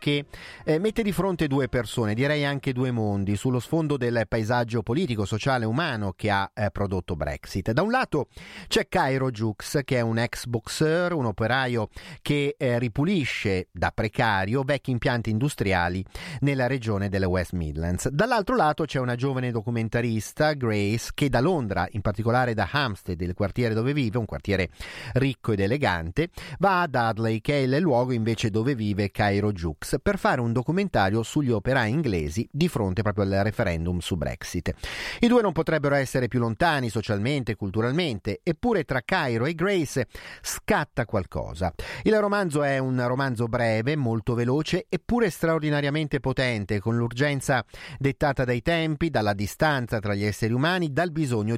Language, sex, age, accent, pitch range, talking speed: Italian, male, 40-59, native, 105-145 Hz, 160 wpm